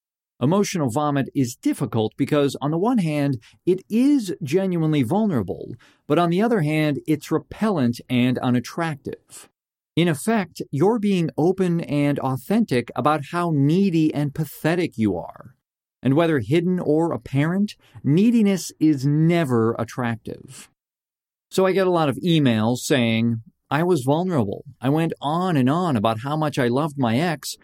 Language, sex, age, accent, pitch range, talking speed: English, male, 40-59, American, 125-175 Hz, 150 wpm